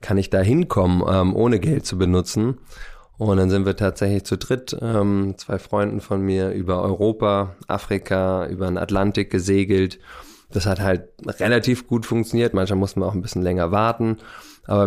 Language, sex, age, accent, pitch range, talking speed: German, male, 20-39, German, 95-105 Hz, 175 wpm